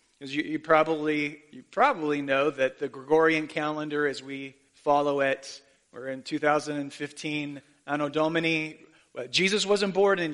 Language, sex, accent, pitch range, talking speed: English, male, American, 140-185 Hz, 145 wpm